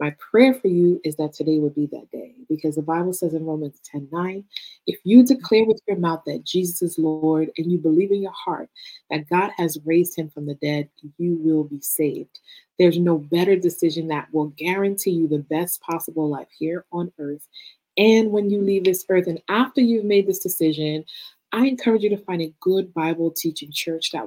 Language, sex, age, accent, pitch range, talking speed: English, female, 30-49, American, 155-195 Hz, 210 wpm